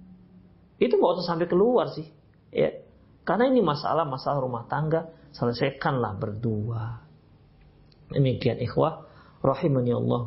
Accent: native